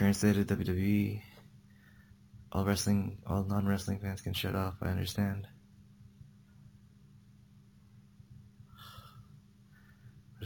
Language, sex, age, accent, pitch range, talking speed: English, male, 20-39, American, 95-110 Hz, 75 wpm